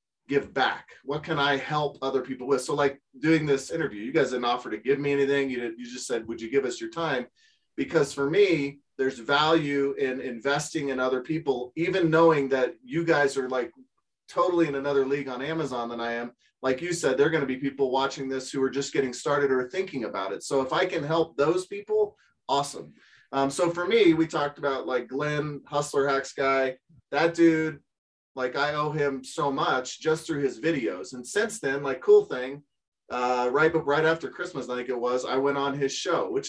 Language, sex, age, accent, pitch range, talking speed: English, male, 30-49, American, 130-155 Hz, 215 wpm